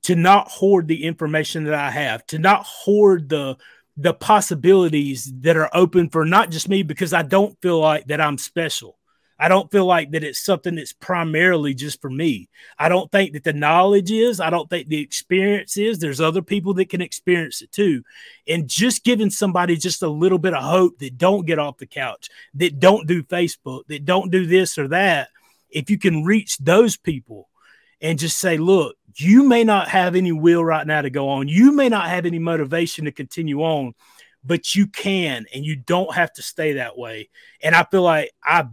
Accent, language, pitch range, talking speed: American, English, 145-185 Hz, 210 wpm